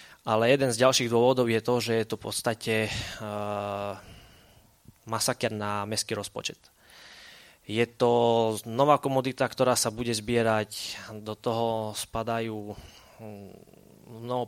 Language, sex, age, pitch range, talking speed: Slovak, male, 20-39, 105-120 Hz, 120 wpm